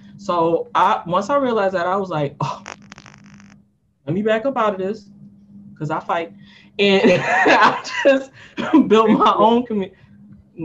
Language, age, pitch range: English, 20-39, 155-185 Hz